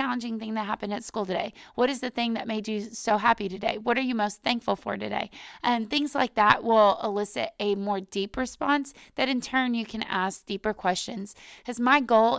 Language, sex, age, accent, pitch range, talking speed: English, female, 20-39, American, 205-245 Hz, 220 wpm